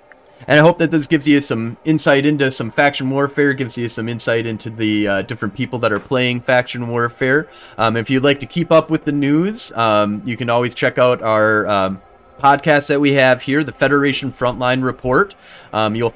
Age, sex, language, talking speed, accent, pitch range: 30-49, male, English, 210 wpm, American, 105-130 Hz